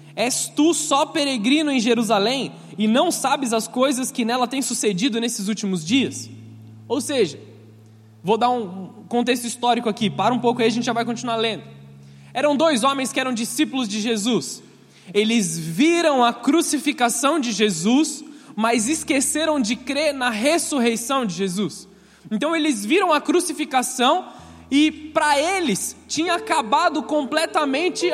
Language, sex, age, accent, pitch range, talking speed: Portuguese, male, 20-39, Brazilian, 190-290 Hz, 145 wpm